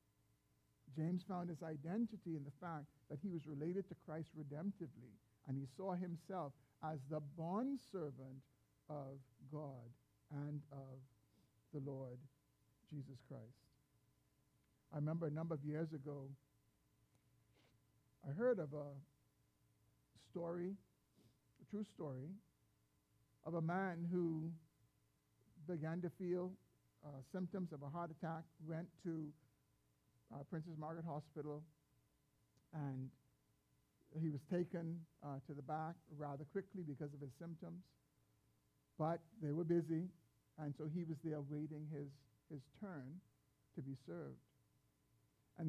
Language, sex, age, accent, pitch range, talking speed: English, male, 50-69, American, 135-175 Hz, 120 wpm